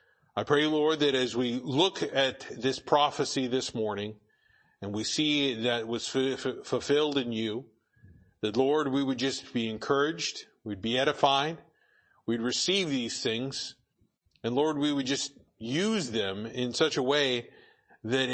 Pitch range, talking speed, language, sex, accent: 115-145 Hz, 150 wpm, English, male, American